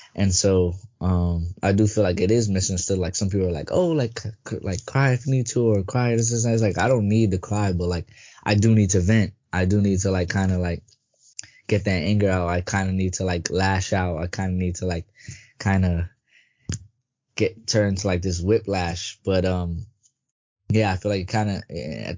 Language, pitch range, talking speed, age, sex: English, 90-105 Hz, 225 wpm, 20-39, male